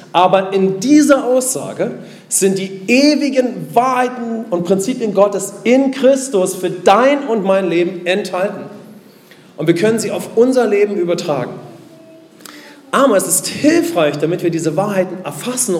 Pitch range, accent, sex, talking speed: 160-205 Hz, German, male, 135 wpm